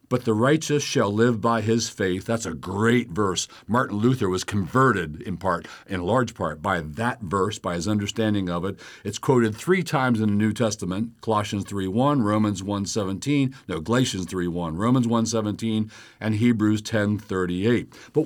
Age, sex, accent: 60-79, male, American